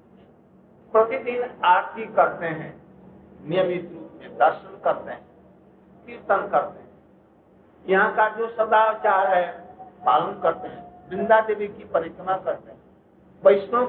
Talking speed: 120 wpm